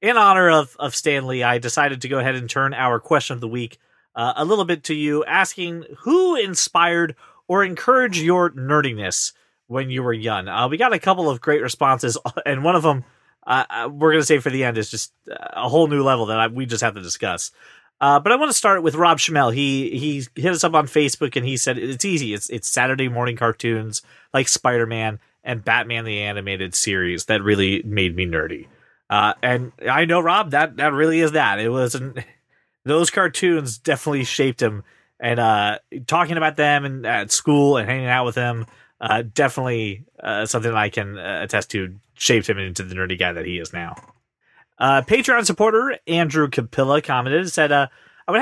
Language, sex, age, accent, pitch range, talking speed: English, male, 30-49, American, 115-160 Hz, 205 wpm